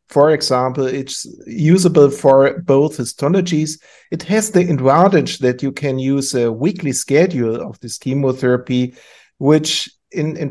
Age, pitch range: 50-69, 125-155 Hz